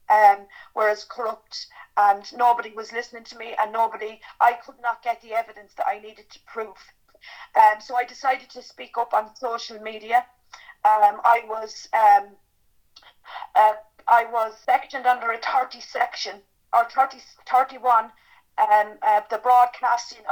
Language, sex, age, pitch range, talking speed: English, female, 40-59, 220-250 Hz, 155 wpm